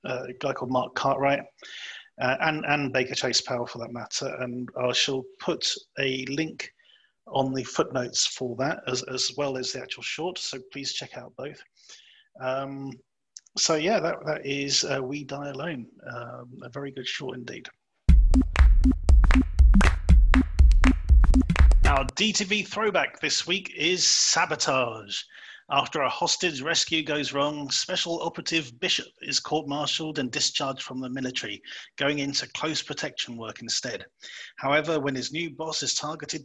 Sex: male